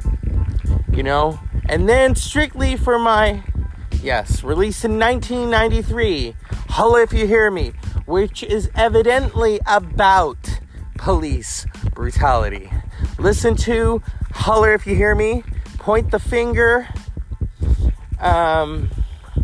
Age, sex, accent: 30-49, male, American